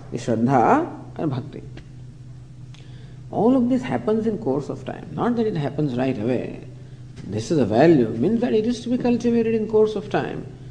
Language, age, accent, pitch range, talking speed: English, 50-69, Indian, 130-215 Hz, 180 wpm